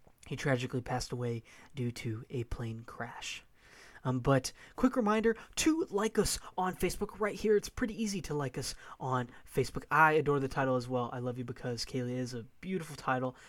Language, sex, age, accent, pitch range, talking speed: English, male, 20-39, American, 130-185 Hz, 190 wpm